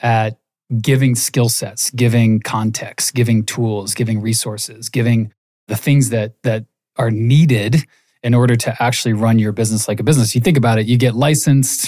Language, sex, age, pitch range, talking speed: English, male, 20-39, 110-125 Hz, 170 wpm